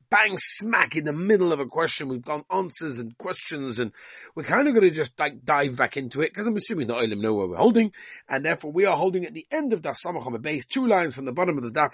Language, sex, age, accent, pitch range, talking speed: English, male, 40-59, British, 145-200 Hz, 270 wpm